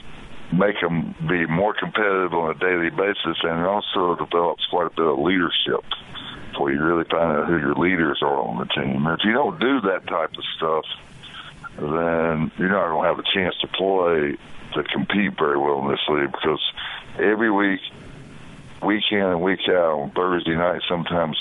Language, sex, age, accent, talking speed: English, male, 60-79, American, 190 wpm